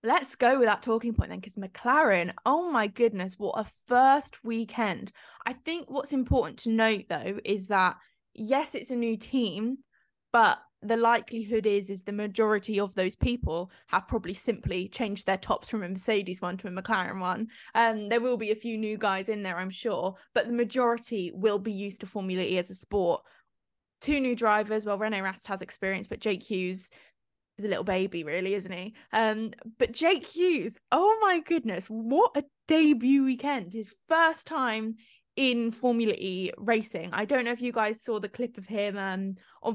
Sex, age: female, 20-39